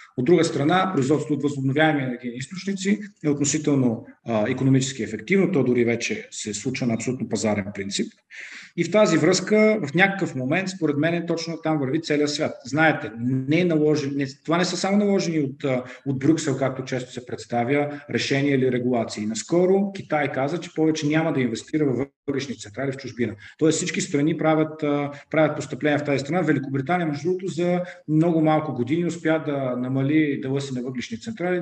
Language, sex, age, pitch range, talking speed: Bulgarian, male, 40-59, 125-170 Hz, 170 wpm